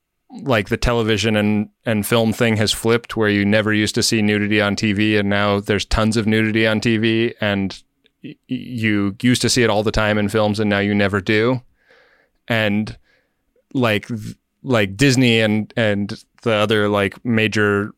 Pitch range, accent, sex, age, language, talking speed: 105-120 Hz, American, male, 20-39, English, 175 wpm